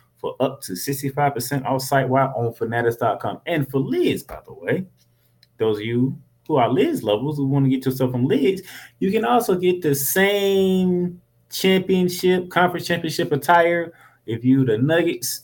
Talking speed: 165 wpm